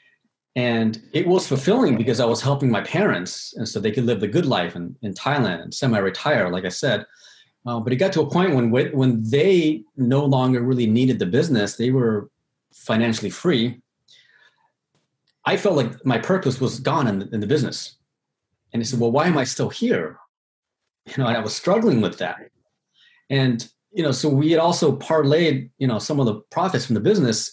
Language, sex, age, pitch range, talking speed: English, male, 30-49, 120-155 Hz, 200 wpm